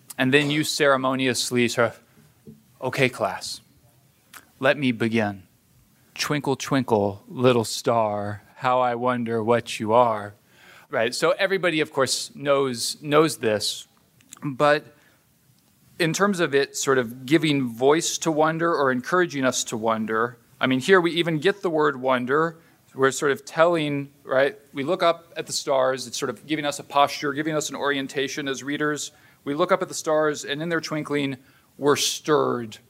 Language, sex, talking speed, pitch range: English, male, 165 wpm, 130-170 Hz